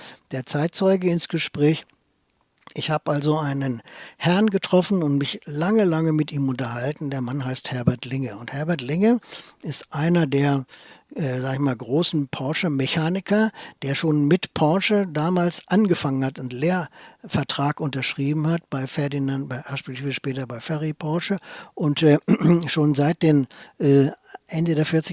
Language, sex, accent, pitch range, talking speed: German, male, German, 140-170 Hz, 150 wpm